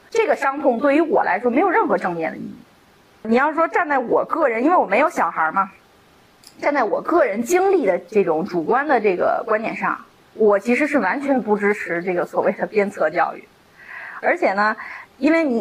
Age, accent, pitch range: 20-39, native, 210-295 Hz